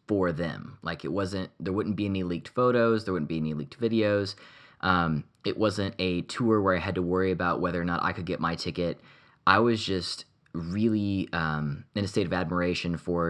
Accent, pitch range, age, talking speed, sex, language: American, 85-105 Hz, 20-39, 210 wpm, male, English